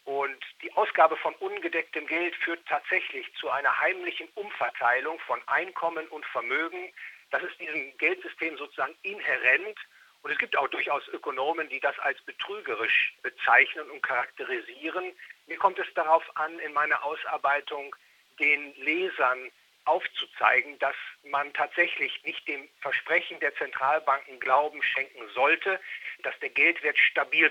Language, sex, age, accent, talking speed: German, male, 50-69, German, 135 wpm